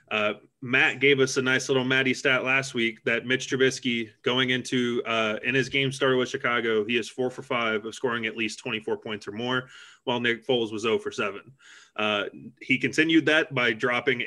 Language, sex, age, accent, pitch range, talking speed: English, male, 20-39, American, 115-135 Hz, 205 wpm